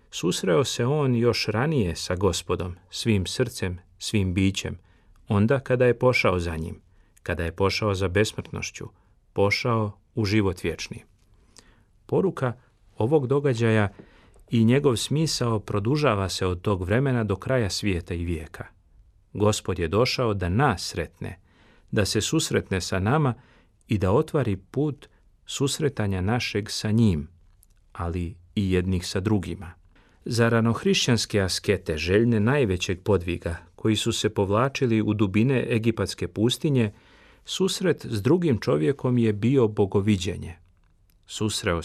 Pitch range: 95-120 Hz